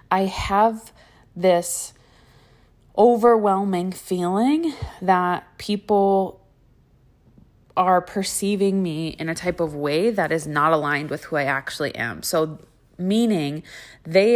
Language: English